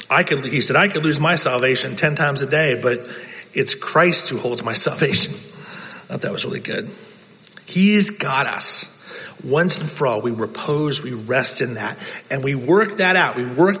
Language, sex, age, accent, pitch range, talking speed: English, male, 40-59, American, 130-185 Hz, 190 wpm